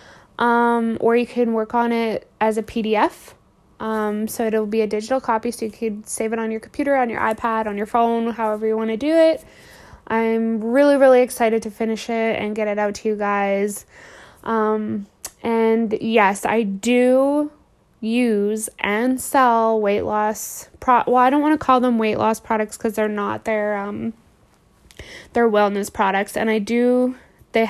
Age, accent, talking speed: 20-39, American, 180 wpm